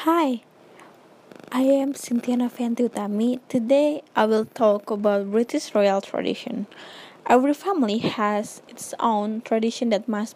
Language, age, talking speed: English, 20-39, 120 wpm